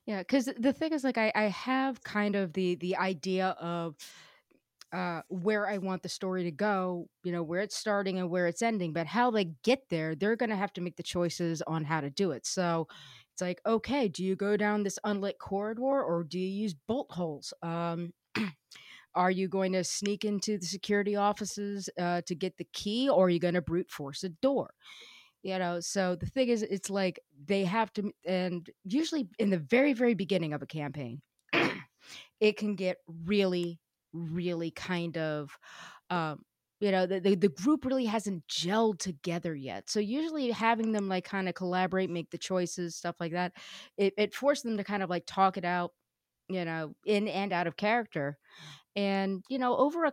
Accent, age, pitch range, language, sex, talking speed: American, 30-49, 175-210 Hz, English, female, 200 wpm